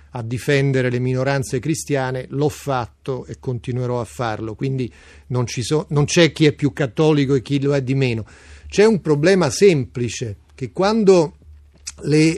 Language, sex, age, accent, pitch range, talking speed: Italian, male, 40-59, native, 125-155 Hz, 155 wpm